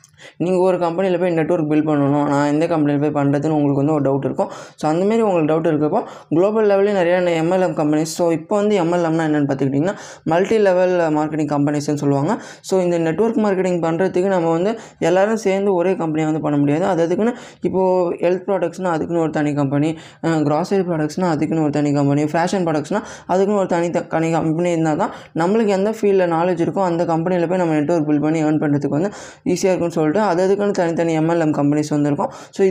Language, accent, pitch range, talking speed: Tamil, native, 155-185 Hz, 180 wpm